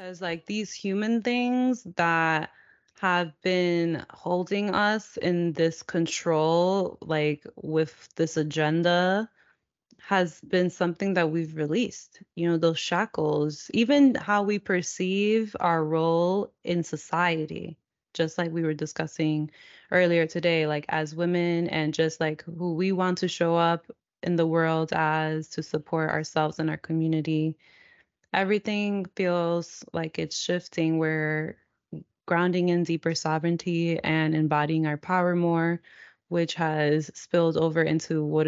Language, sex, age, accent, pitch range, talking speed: English, female, 20-39, American, 155-180 Hz, 135 wpm